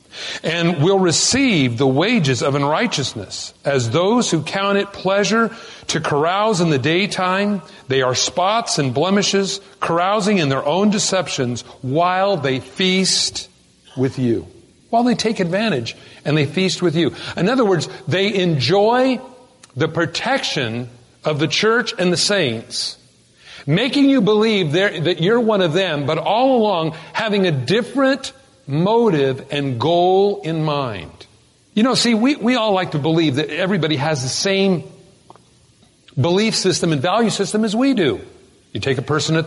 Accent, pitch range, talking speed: American, 150-205 Hz, 155 wpm